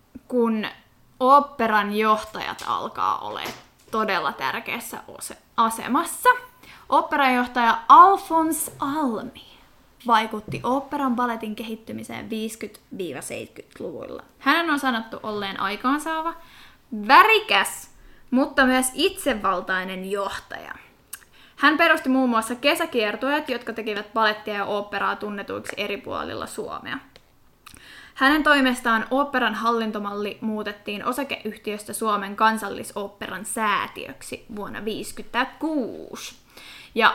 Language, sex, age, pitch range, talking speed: Finnish, female, 20-39, 210-270 Hz, 85 wpm